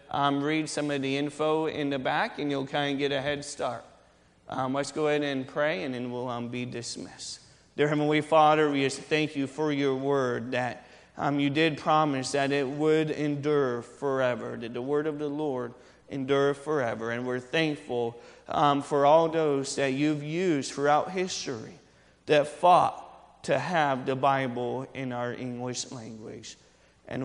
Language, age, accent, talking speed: English, 30-49, American, 175 wpm